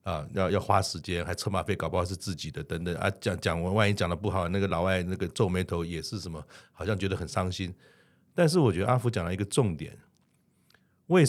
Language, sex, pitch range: Chinese, male, 90-115 Hz